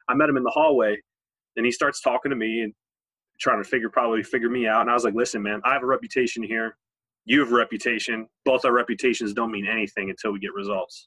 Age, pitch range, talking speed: 20-39, 110-130 Hz, 245 wpm